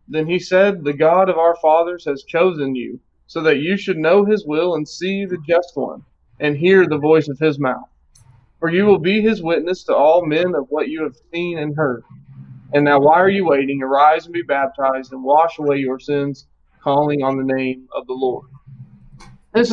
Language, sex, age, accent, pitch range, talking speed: English, male, 30-49, American, 140-180 Hz, 210 wpm